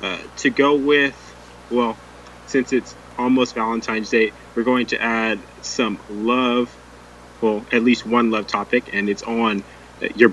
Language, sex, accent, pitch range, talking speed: English, male, American, 85-130 Hz, 155 wpm